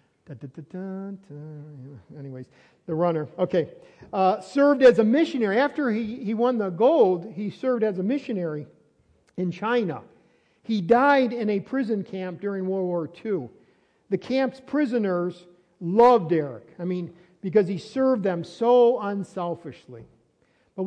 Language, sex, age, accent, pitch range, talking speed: English, male, 50-69, American, 170-235 Hz, 130 wpm